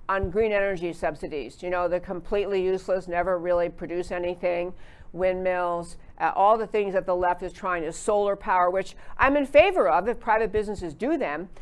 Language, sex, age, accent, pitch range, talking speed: English, female, 50-69, American, 170-205 Hz, 185 wpm